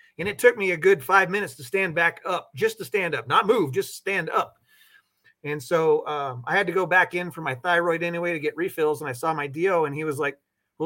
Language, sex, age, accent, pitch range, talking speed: English, male, 30-49, American, 150-200 Hz, 260 wpm